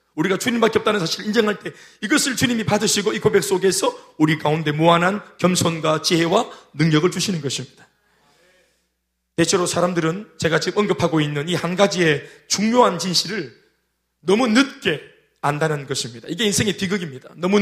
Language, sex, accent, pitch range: Korean, male, native, 165-240 Hz